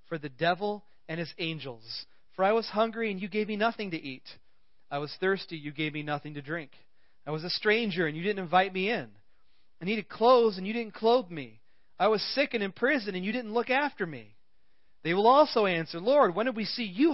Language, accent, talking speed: English, American, 230 wpm